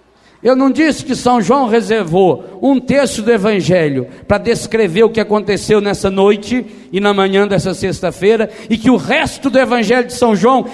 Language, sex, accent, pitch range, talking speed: Portuguese, male, Brazilian, 175-245 Hz, 180 wpm